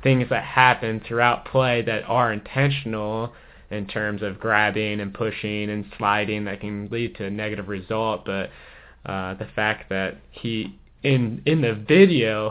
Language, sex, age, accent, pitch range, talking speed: English, male, 20-39, American, 105-120 Hz, 160 wpm